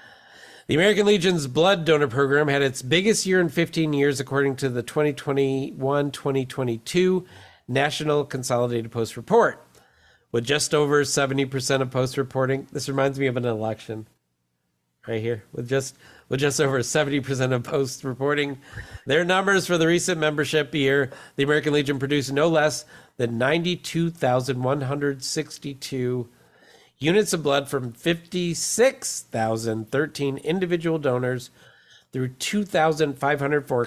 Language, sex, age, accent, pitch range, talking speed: English, male, 50-69, American, 130-155 Hz, 120 wpm